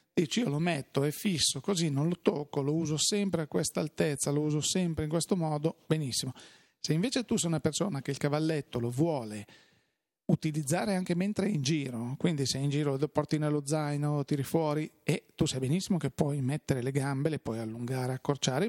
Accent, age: native, 40-59